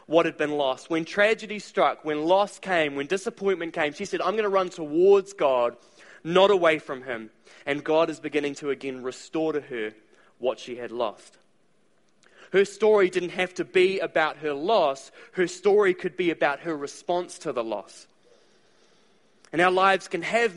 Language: English